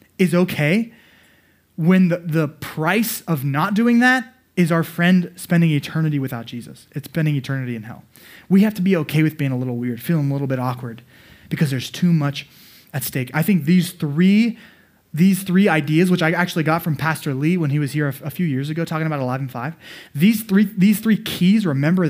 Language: English